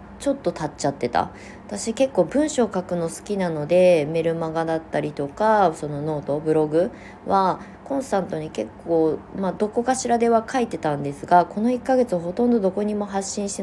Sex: female